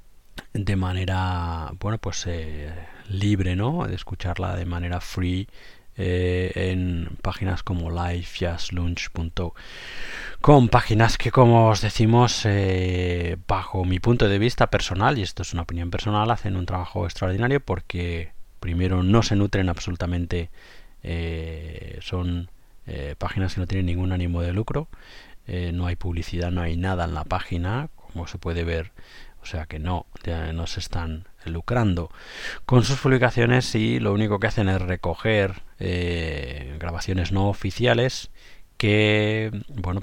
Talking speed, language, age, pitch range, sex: 145 wpm, Spanish, 20-39, 85-100 Hz, male